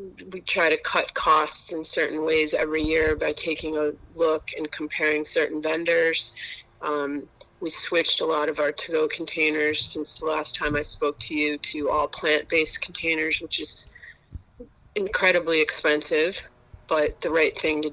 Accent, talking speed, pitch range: American, 160 wpm, 155-175 Hz